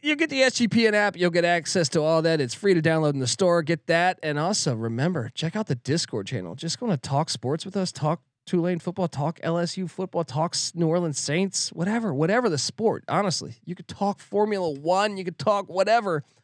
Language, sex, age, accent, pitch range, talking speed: English, male, 20-39, American, 145-190 Hz, 215 wpm